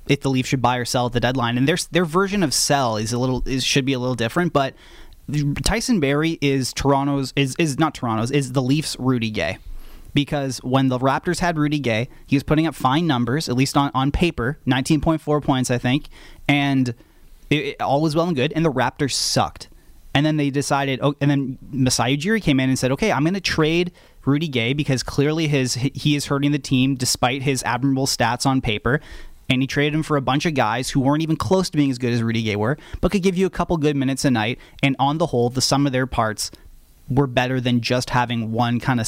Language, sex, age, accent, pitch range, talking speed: English, male, 20-39, American, 125-150 Hz, 240 wpm